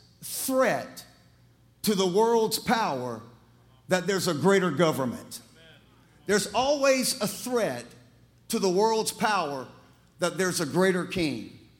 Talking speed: 115 wpm